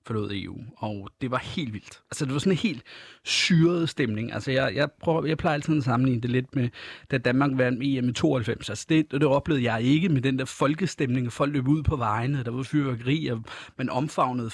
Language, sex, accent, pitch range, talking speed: Danish, male, native, 115-145 Hz, 235 wpm